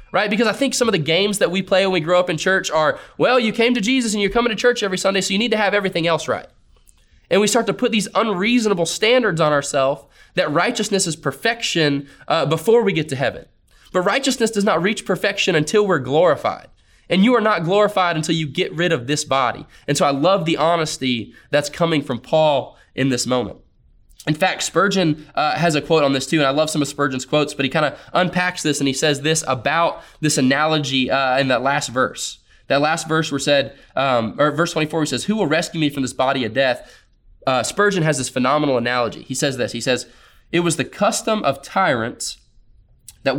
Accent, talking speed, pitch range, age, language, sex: American, 225 wpm, 140-195 Hz, 20-39, English, male